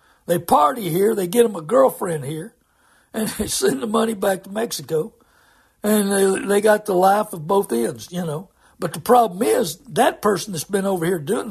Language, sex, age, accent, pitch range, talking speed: English, male, 60-79, American, 150-205 Hz, 205 wpm